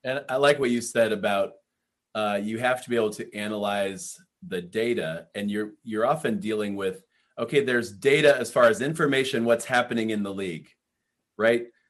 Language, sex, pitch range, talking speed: English, male, 115-150 Hz, 180 wpm